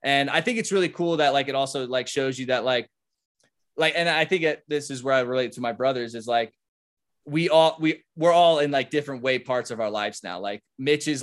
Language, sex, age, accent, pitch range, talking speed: English, male, 20-39, American, 125-150 Hz, 245 wpm